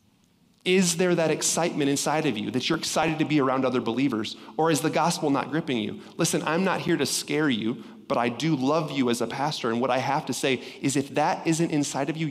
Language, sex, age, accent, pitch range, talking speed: English, male, 30-49, American, 130-165 Hz, 245 wpm